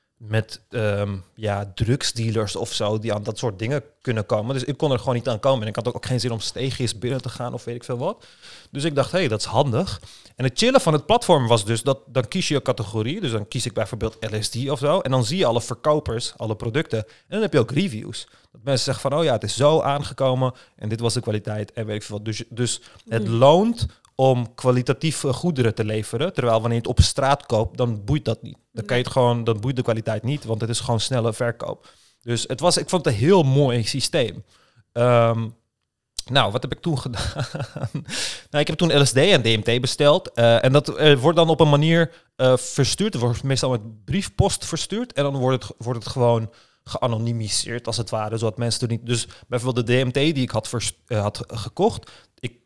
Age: 30-49